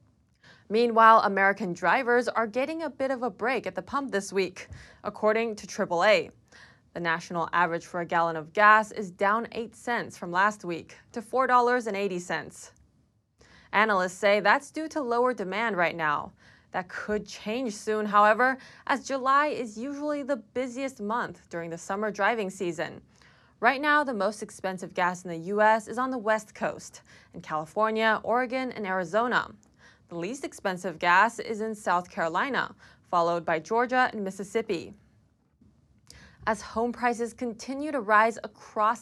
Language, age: English, 20-39